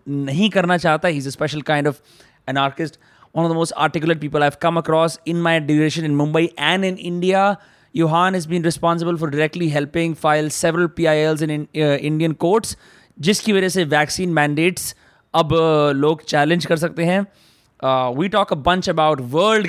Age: 20-39